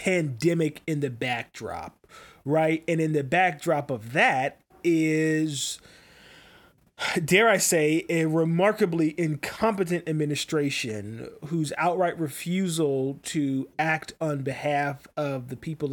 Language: English